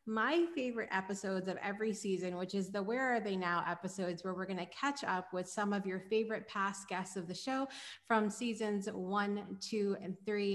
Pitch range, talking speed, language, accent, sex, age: 190-235 Hz, 205 wpm, English, American, female, 30-49